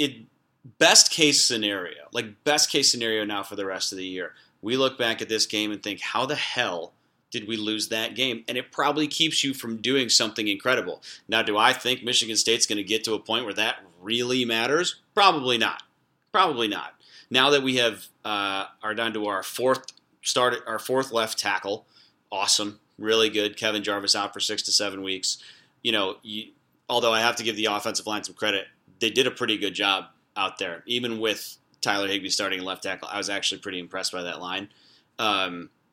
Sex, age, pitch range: male, 30-49, 105-120 Hz